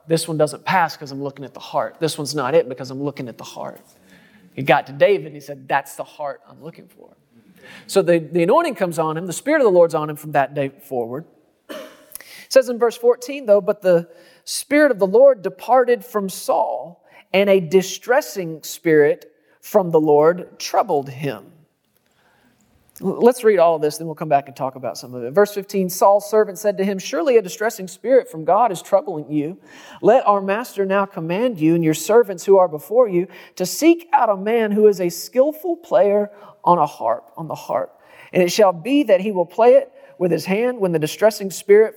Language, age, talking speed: English, 40-59, 215 wpm